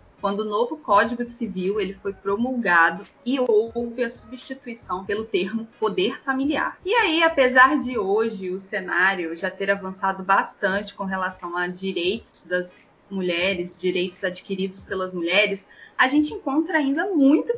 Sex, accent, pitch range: female, Brazilian, 195-260 Hz